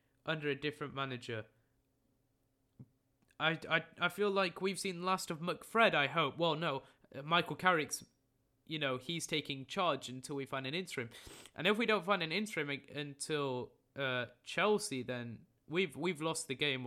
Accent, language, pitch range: British, English, 130-160 Hz